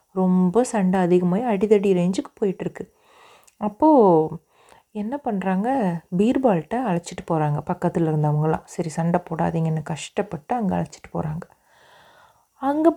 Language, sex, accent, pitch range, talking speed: Tamil, female, native, 175-230 Hz, 100 wpm